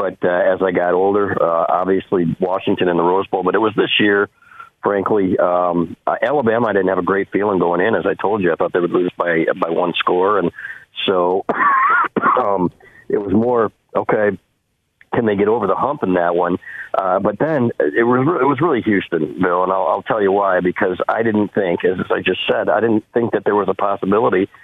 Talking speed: 225 wpm